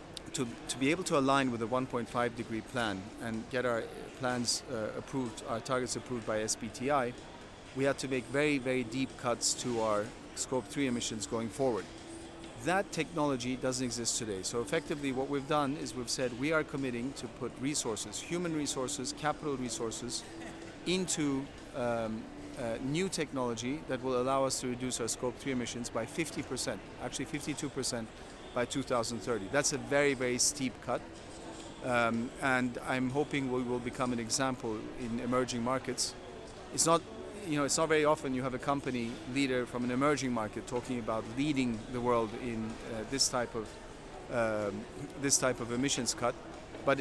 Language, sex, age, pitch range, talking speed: English, male, 40-59, 120-140 Hz, 170 wpm